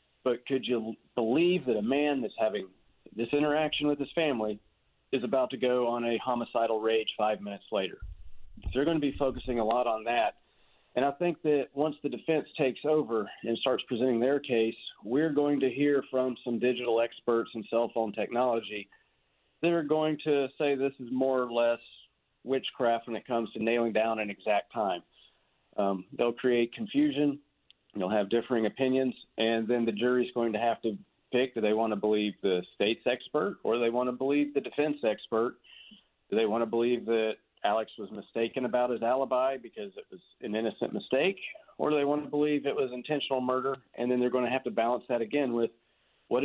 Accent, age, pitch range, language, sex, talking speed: American, 40-59, 115-140 Hz, English, male, 200 wpm